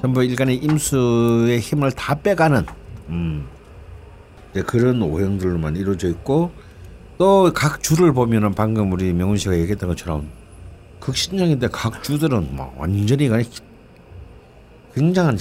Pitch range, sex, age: 90-135 Hz, male, 60-79